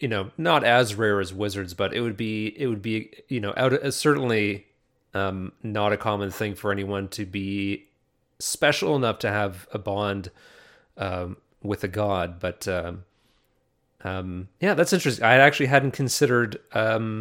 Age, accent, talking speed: 30-49, American, 170 wpm